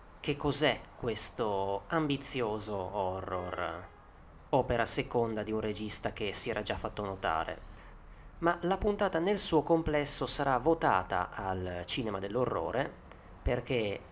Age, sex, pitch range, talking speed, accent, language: 30-49, male, 95-130 Hz, 120 wpm, native, Italian